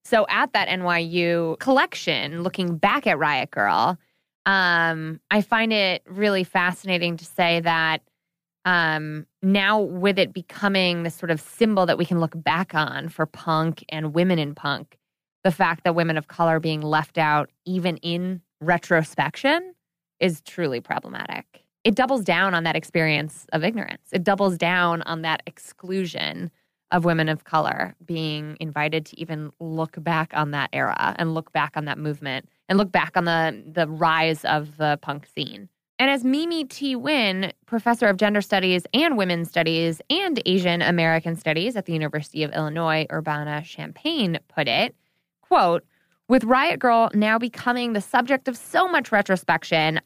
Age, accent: 20-39, American